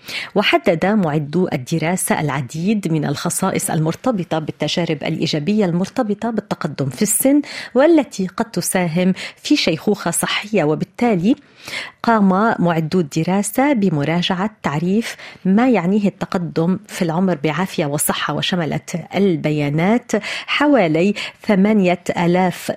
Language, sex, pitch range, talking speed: Arabic, female, 170-215 Hz, 100 wpm